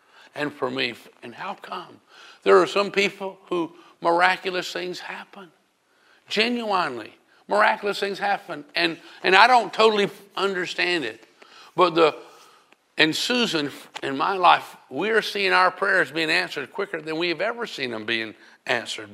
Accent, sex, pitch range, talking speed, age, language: American, male, 180-270 Hz, 150 wpm, 50-69, English